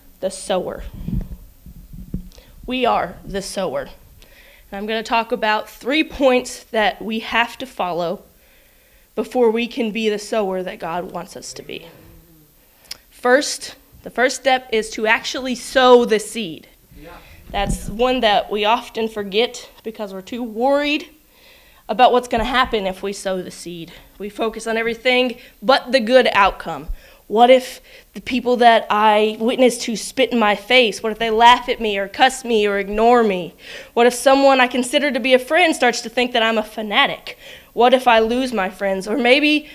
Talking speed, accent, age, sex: 175 wpm, American, 20-39, female